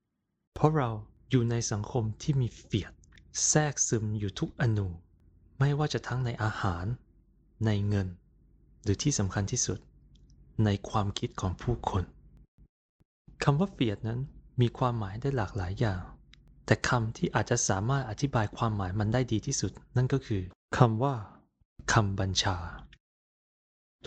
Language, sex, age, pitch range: Thai, male, 20-39, 95-125 Hz